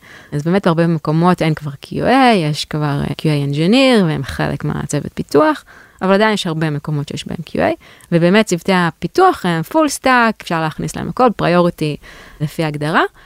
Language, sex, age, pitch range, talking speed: Hebrew, female, 20-39, 155-230 Hz, 165 wpm